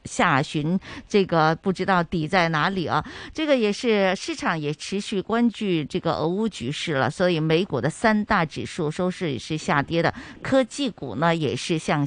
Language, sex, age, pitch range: Chinese, female, 50-69, 155-220 Hz